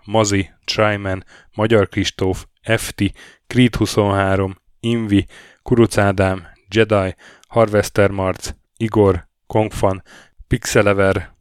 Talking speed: 80 wpm